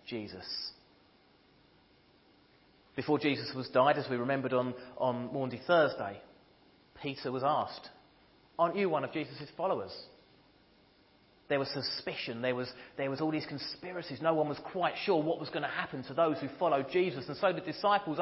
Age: 30-49